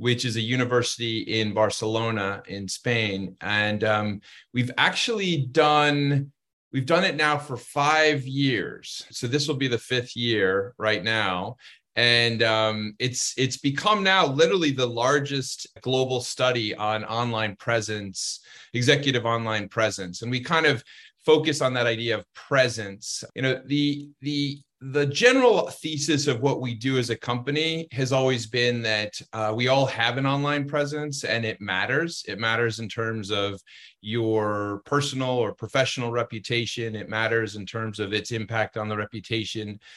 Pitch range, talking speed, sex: 110-145 Hz, 155 wpm, male